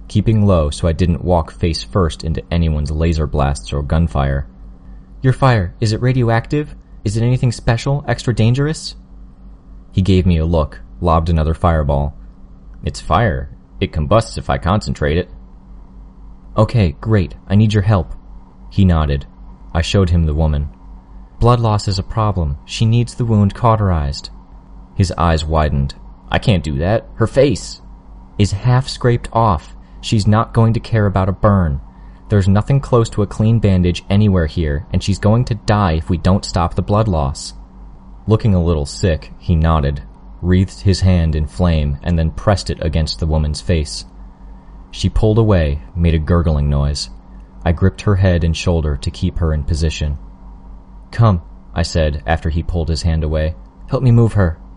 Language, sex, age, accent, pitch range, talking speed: English, male, 30-49, American, 75-100 Hz, 170 wpm